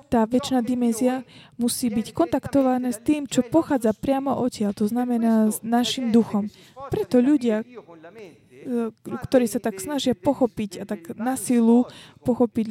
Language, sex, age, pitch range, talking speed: Slovak, female, 20-39, 205-245 Hz, 135 wpm